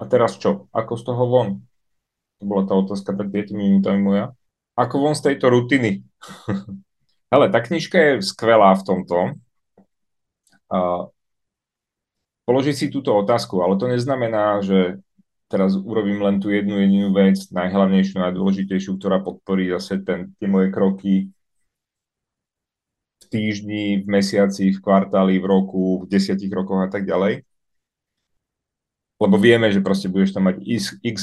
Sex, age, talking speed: male, 30-49, 140 wpm